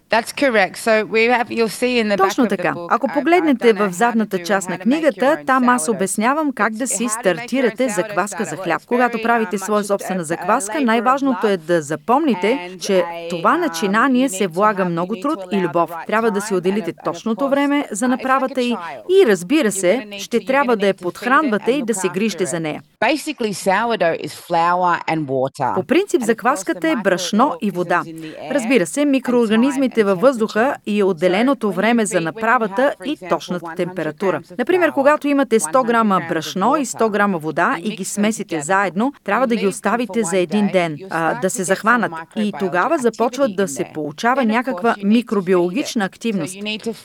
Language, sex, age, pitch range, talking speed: Bulgarian, female, 30-49, 190-260 Hz, 145 wpm